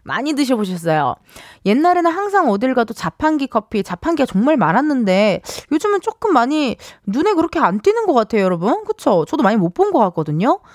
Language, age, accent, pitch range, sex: Korean, 20-39, native, 195-315 Hz, female